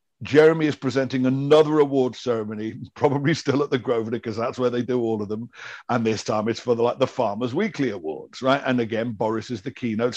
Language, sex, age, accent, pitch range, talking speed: English, male, 60-79, British, 120-155 Hz, 220 wpm